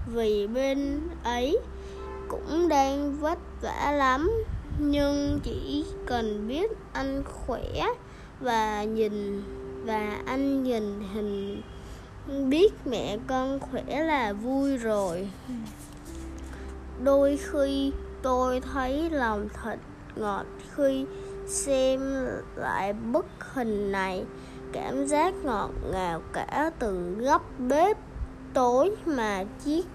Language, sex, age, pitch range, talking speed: Vietnamese, female, 20-39, 205-285 Hz, 100 wpm